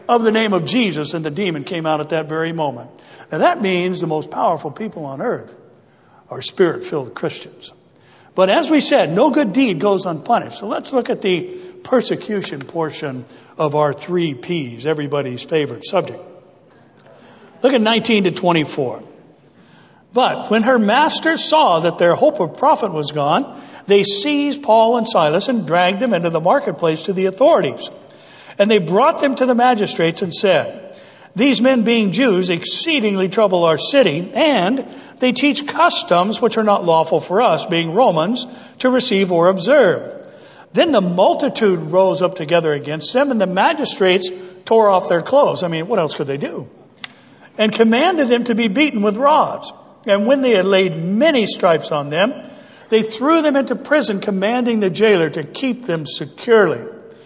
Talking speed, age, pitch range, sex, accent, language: 170 wpm, 60-79, 175-255 Hz, male, American, English